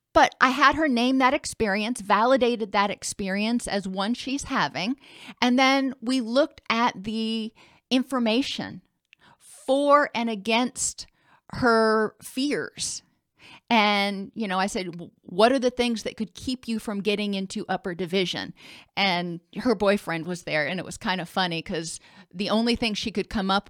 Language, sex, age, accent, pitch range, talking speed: English, female, 40-59, American, 185-235 Hz, 160 wpm